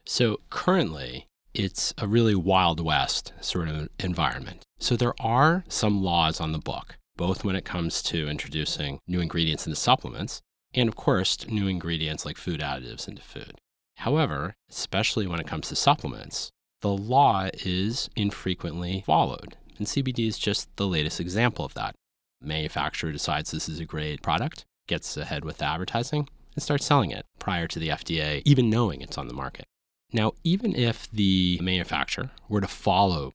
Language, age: English, 30-49